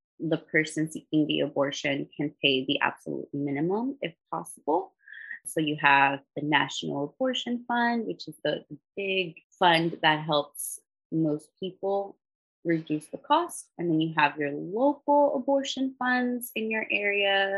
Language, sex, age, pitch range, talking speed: English, female, 20-39, 150-215 Hz, 145 wpm